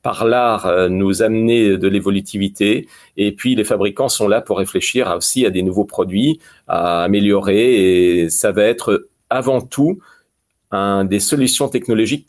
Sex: male